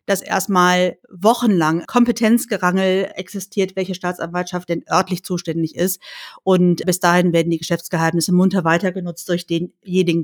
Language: German